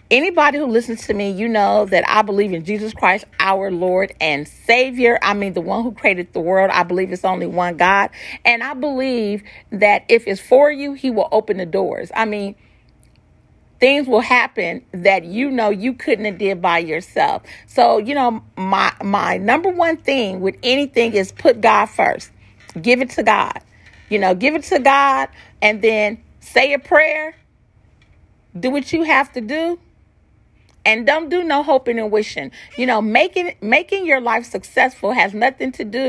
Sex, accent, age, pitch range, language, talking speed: female, American, 40-59, 200-265 Hz, English, 185 wpm